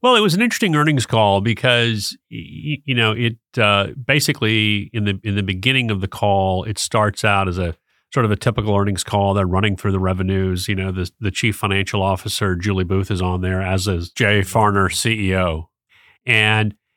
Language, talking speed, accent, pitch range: English, 195 wpm, American, 95-115 Hz